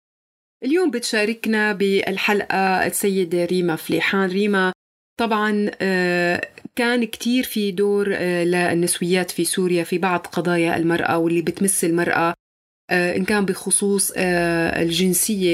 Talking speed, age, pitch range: 100 wpm, 30-49, 175-205 Hz